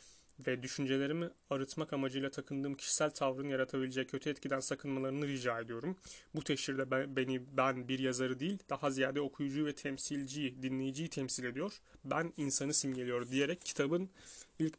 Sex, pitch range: male, 130-145 Hz